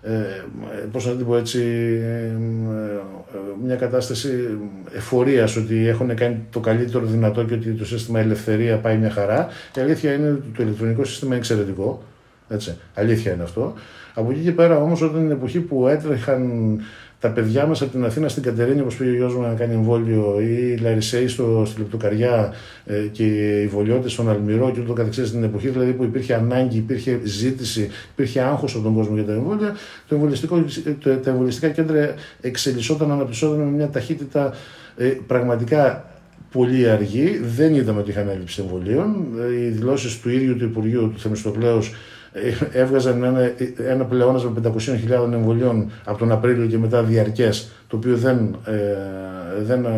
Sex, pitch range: male, 110-130 Hz